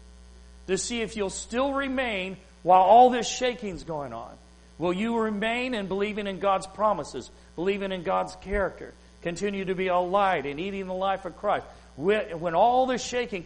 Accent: American